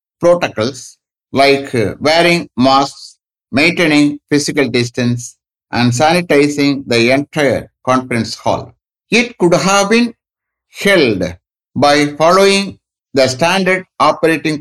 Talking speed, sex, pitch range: 95 wpm, male, 125-165 Hz